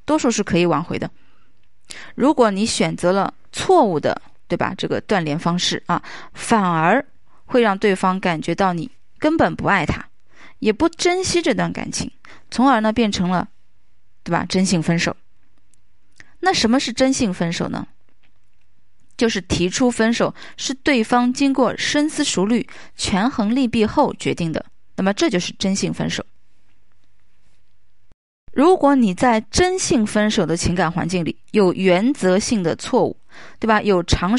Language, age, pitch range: Chinese, 20-39, 170-245 Hz